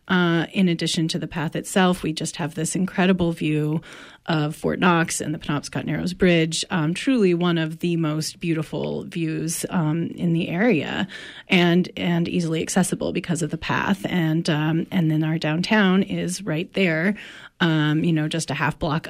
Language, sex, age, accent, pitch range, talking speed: English, female, 30-49, American, 155-180 Hz, 180 wpm